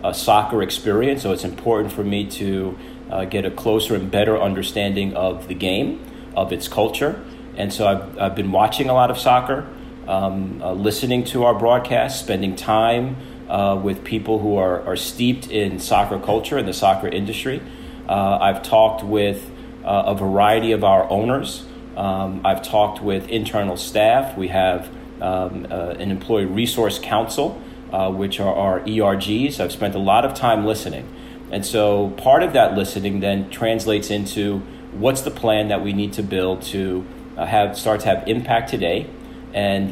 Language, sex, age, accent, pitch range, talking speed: English, male, 40-59, American, 95-110 Hz, 175 wpm